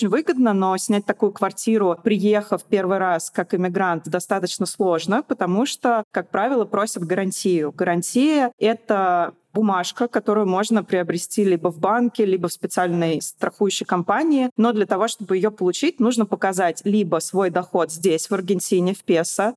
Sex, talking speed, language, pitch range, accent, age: female, 145 wpm, Russian, 175-215 Hz, native, 20-39